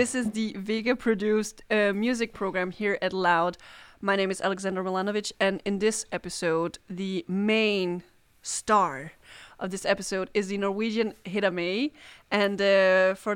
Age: 20-39